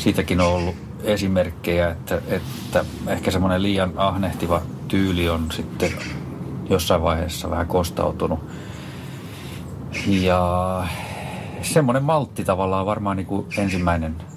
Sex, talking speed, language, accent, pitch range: male, 110 wpm, Finnish, native, 85-100 Hz